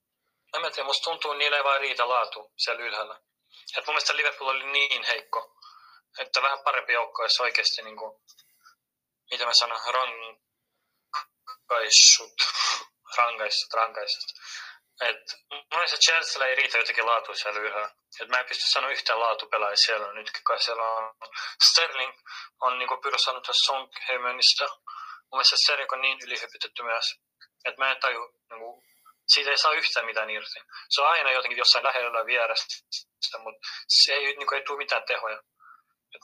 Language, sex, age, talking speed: Finnish, male, 20-39, 160 wpm